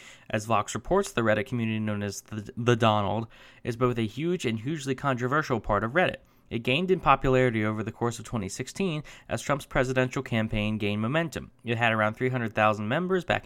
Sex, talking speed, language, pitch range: male, 185 wpm, English, 110-135 Hz